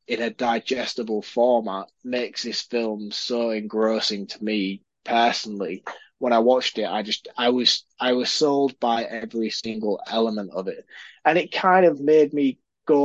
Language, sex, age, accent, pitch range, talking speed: English, male, 20-39, British, 110-135 Hz, 165 wpm